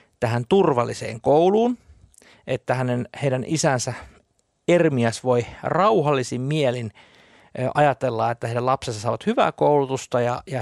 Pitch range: 120-160 Hz